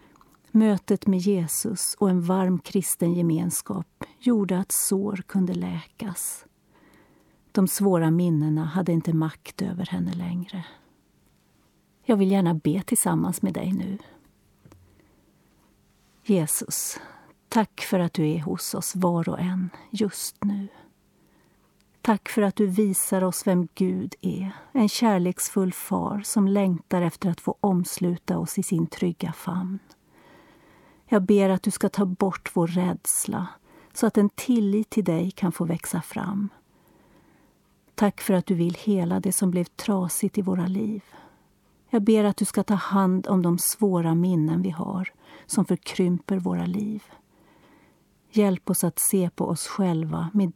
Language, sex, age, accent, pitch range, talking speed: Swedish, female, 40-59, native, 175-205 Hz, 145 wpm